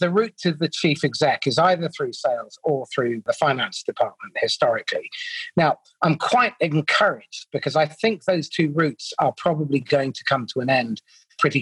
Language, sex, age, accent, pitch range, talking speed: English, male, 40-59, British, 140-180 Hz, 180 wpm